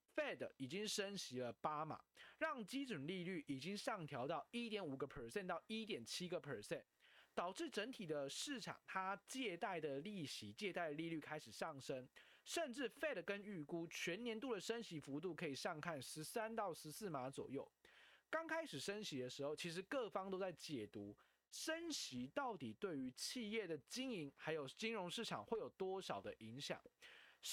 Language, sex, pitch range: Chinese, male, 150-230 Hz